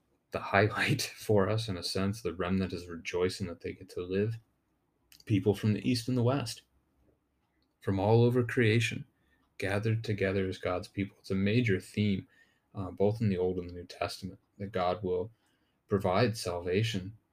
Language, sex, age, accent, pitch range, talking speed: English, male, 30-49, American, 95-105 Hz, 175 wpm